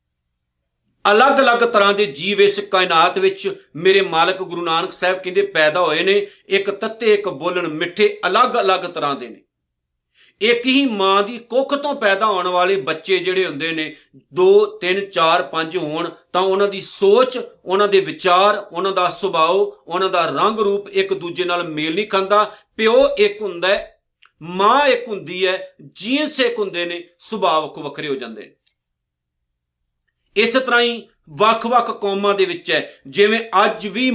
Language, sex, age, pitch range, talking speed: Punjabi, male, 50-69, 175-225 Hz, 160 wpm